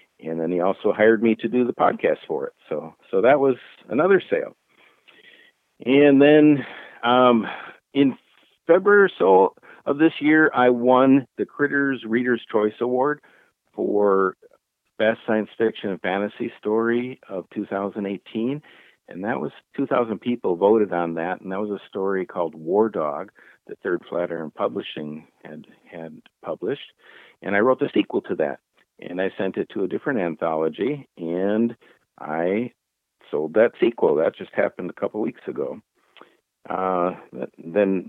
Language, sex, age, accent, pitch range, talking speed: English, male, 50-69, American, 90-125 Hz, 155 wpm